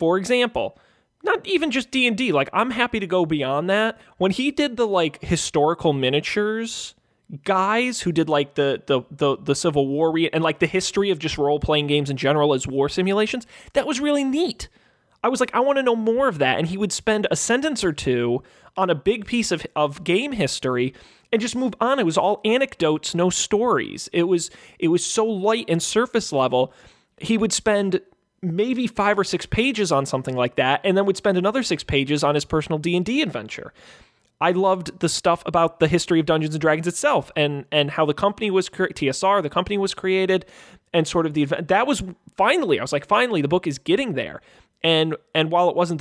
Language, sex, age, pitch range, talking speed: English, male, 20-39, 150-205 Hz, 215 wpm